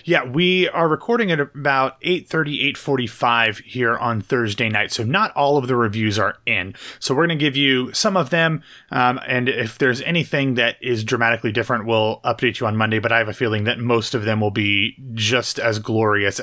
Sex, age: male, 30-49